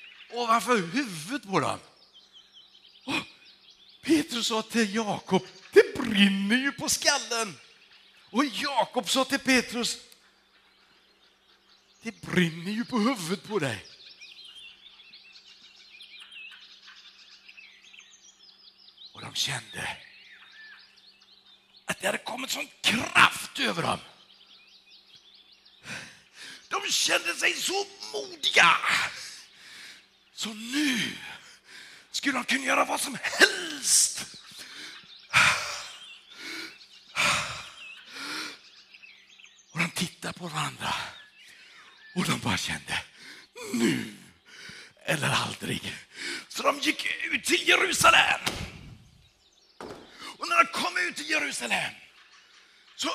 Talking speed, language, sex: 90 wpm, Swedish, male